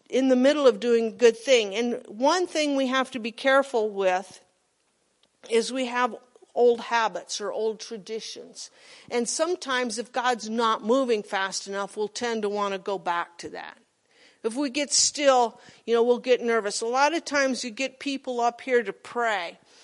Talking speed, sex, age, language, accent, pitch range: 190 wpm, female, 50-69, English, American, 220-270 Hz